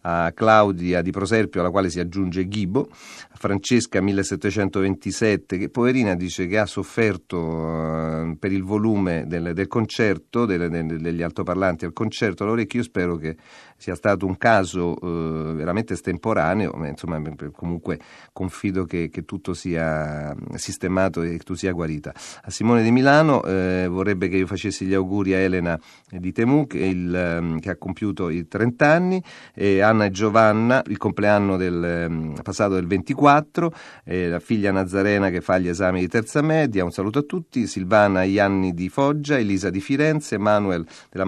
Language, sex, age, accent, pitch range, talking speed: Italian, male, 40-59, native, 90-110 Hz, 160 wpm